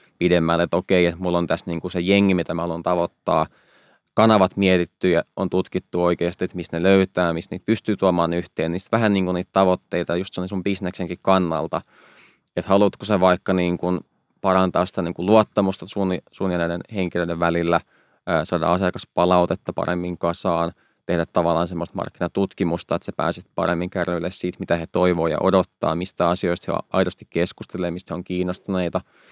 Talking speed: 170 wpm